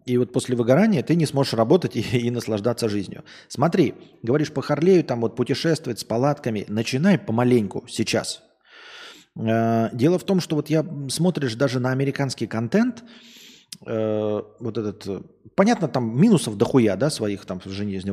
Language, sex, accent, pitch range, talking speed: Russian, male, native, 115-150 Hz, 160 wpm